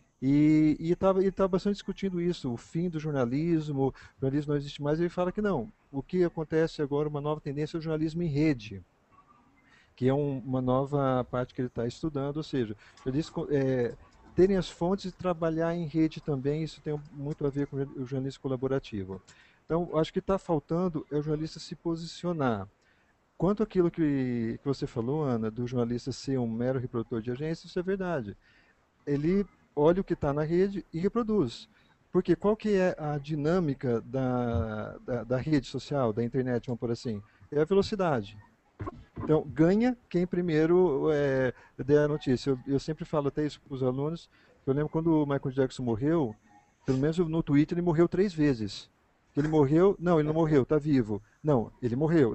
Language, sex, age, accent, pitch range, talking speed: Portuguese, male, 50-69, Brazilian, 130-165 Hz, 190 wpm